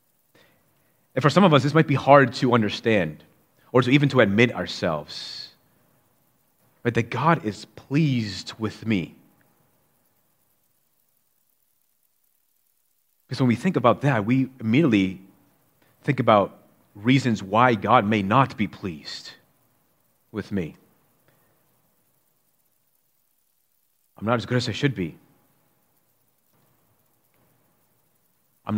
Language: English